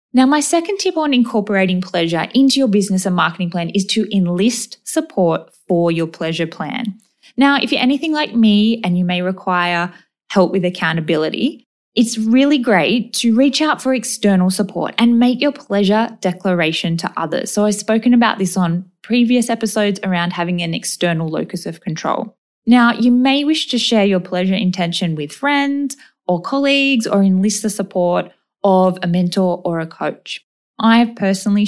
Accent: Australian